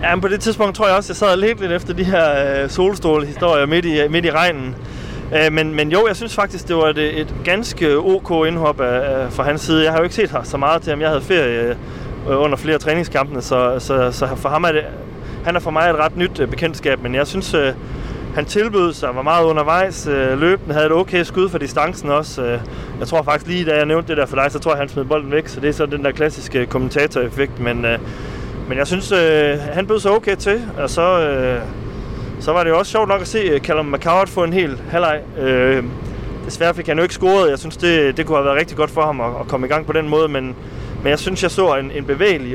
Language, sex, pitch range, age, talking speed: Danish, male, 130-170 Hz, 30-49, 245 wpm